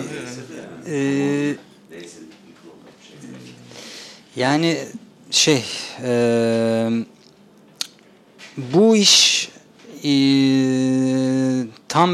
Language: Turkish